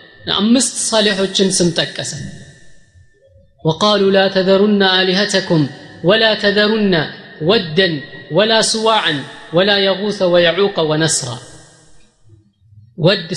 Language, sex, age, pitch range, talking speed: Amharic, female, 30-49, 160-210 Hz, 75 wpm